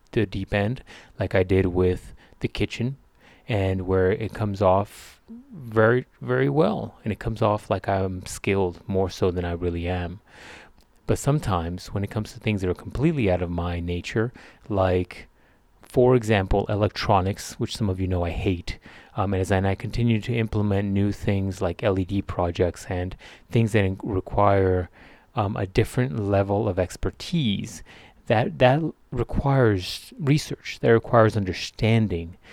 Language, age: English, 30-49